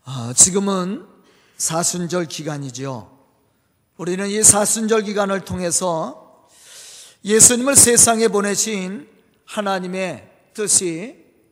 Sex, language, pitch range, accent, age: male, Korean, 185-255 Hz, native, 40-59